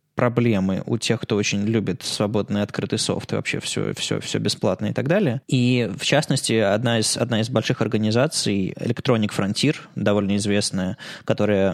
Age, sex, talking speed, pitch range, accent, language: 20-39, male, 160 wpm, 105-140 Hz, native, Russian